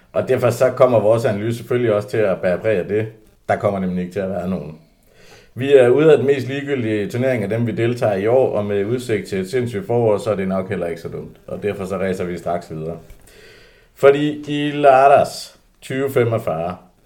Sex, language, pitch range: male, Danish, 95-120 Hz